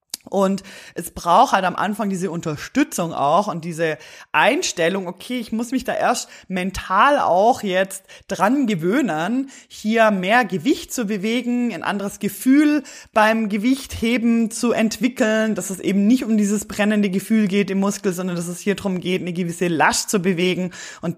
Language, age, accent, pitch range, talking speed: German, 20-39, German, 170-230 Hz, 165 wpm